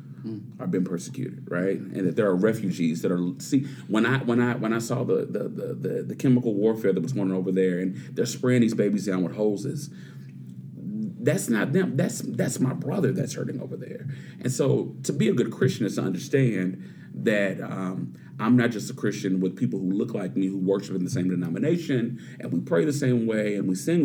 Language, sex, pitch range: English, male, 95-125 Hz